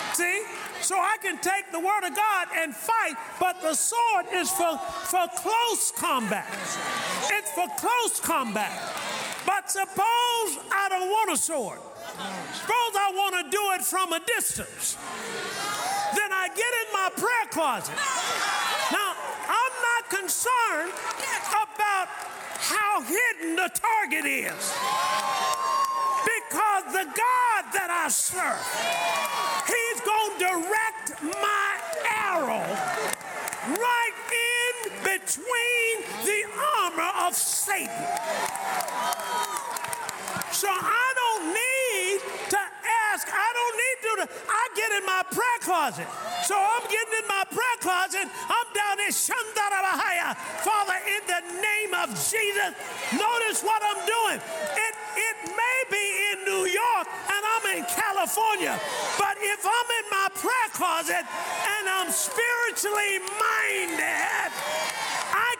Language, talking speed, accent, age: English, 120 wpm, American, 40-59